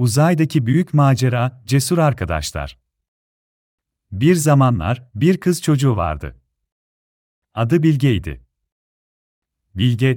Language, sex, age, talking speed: Turkish, male, 40-59, 85 wpm